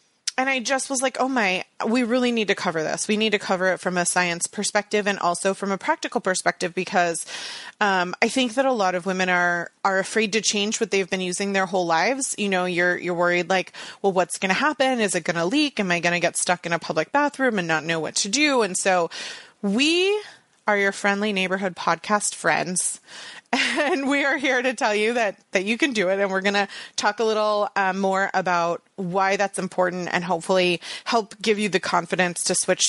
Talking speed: 230 wpm